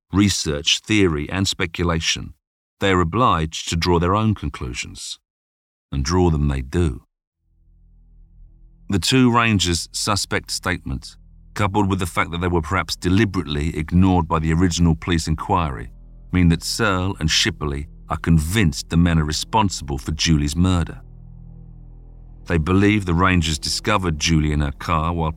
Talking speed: 145 wpm